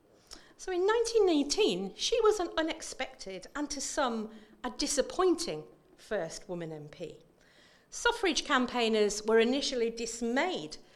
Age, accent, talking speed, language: 50-69, British, 110 wpm, English